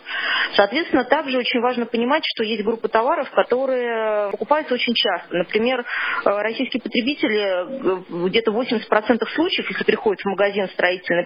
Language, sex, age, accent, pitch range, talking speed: Russian, female, 20-39, native, 205-260 Hz, 135 wpm